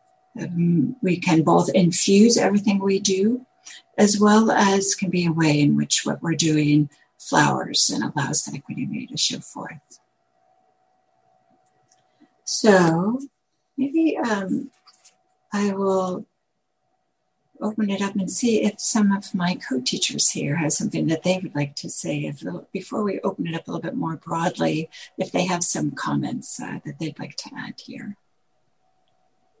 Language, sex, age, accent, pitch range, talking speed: English, female, 60-79, American, 155-220 Hz, 150 wpm